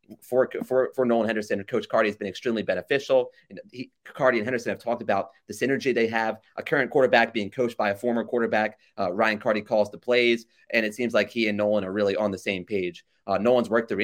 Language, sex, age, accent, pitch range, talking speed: English, male, 30-49, American, 100-115 Hz, 235 wpm